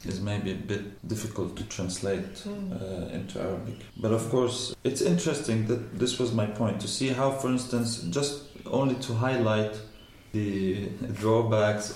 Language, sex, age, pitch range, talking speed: Danish, male, 30-49, 100-115 Hz, 155 wpm